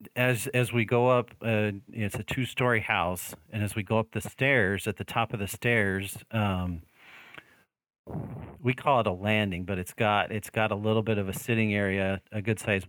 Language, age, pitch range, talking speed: English, 40-59, 95-115 Hz, 220 wpm